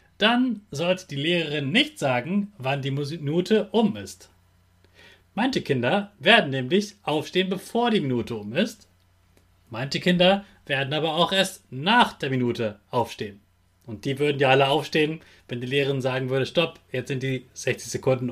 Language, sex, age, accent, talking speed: German, male, 30-49, German, 155 wpm